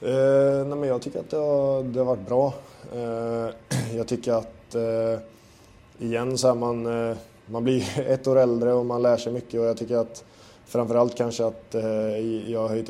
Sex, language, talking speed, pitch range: male, Swedish, 200 wpm, 110-120 Hz